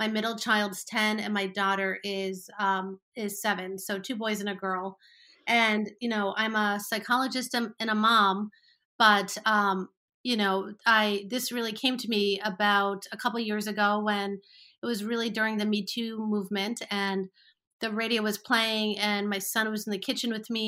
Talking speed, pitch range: 185 wpm, 200-230 Hz